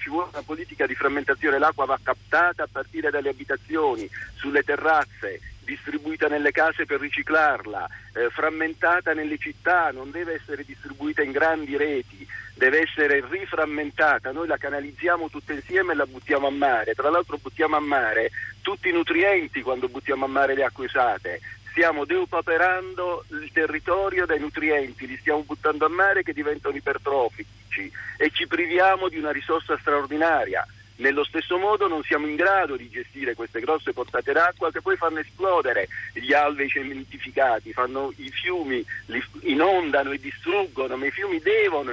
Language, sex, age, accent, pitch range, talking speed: Italian, male, 50-69, native, 145-195 Hz, 155 wpm